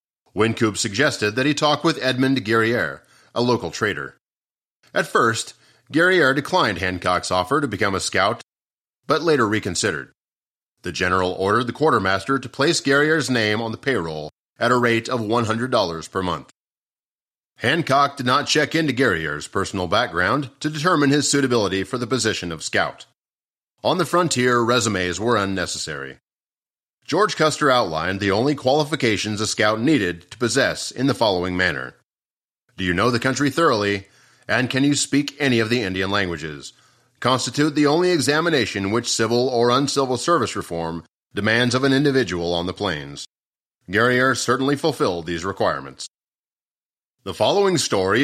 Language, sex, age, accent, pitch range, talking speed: English, male, 30-49, American, 95-135 Hz, 150 wpm